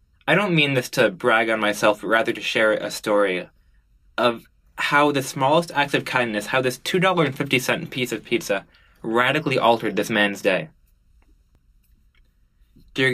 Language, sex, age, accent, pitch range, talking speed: English, male, 20-39, American, 95-120 Hz, 150 wpm